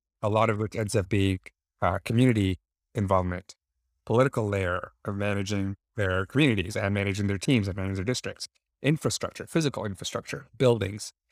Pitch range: 95-110 Hz